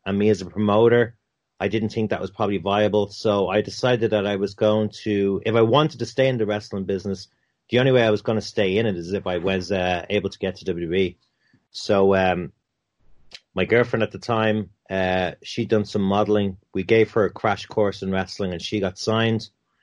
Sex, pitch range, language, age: male, 95-110 Hz, English, 30-49